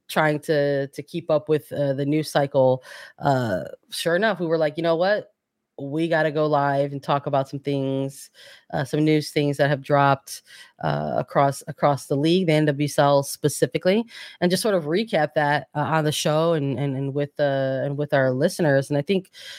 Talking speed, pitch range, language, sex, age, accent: 205 wpm, 150-180 Hz, English, female, 20-39, American